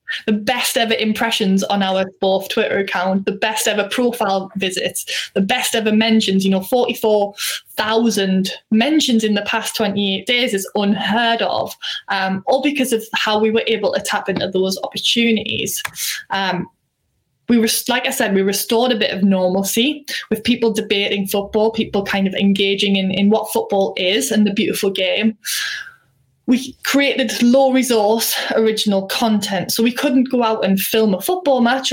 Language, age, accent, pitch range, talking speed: English, 10-29, British, 195-235 Hz, 165 wpm